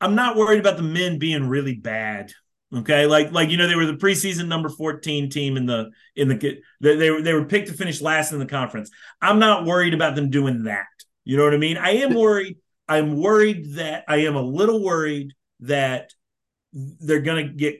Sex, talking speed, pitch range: male, 210 wpm, 135-170 Hz